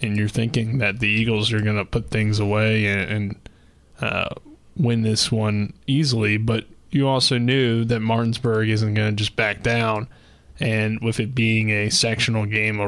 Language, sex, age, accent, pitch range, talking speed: English, male, 20-39, American, 110-120 Hz, 180 wpm